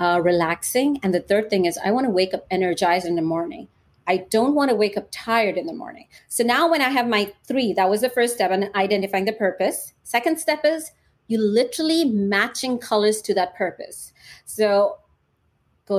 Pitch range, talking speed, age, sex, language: 180-220 Hz, 205 wpm, 30-49, female, English